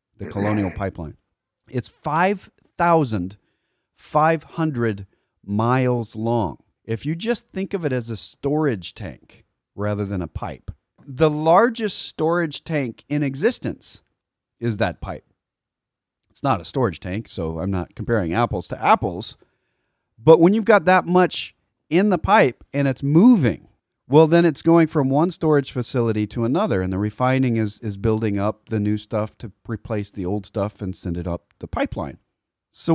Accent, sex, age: American, male, 40-59